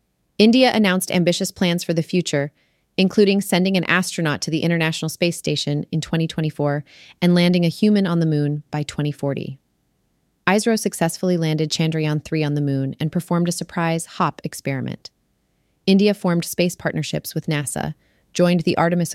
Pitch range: 145-180 Hz